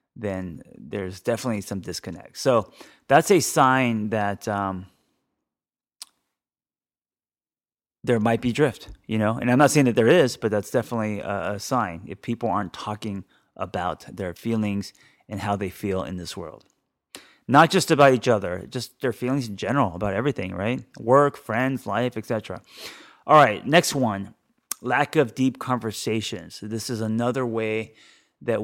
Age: 30-49